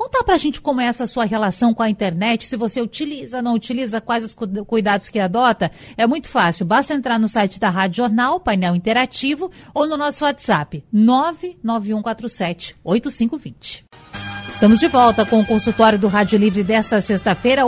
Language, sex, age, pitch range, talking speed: Portuguese, female, 50-69, 205-270 Hz, 175 wpm